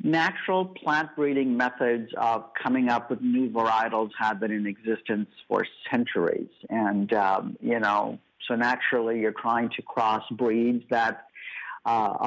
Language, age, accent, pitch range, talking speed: English, 50-69, American, 110-140 Hz, 140 wpm